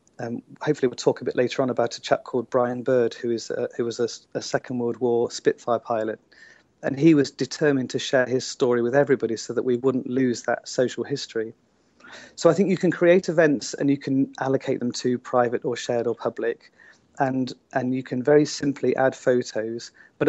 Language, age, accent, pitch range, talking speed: English, 40-59, British, 120-145 Hz, 210 wpm